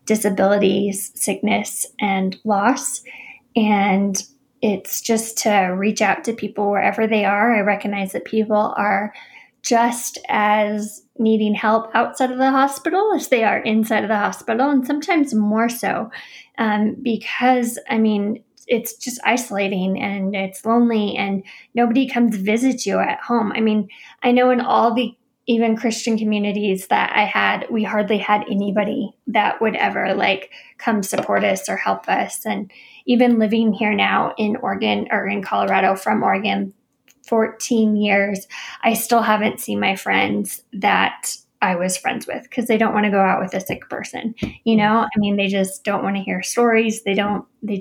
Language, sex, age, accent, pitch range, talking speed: English, female, 20-39, American, 200-235 Hz, 170 wpm